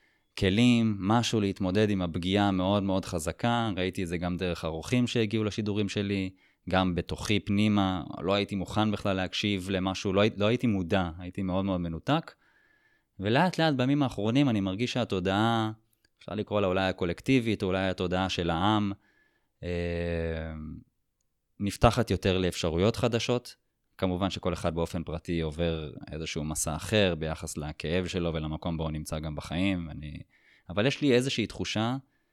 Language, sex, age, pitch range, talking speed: Hebrew, male, 20-39, 85-105 Hz, 150 wpm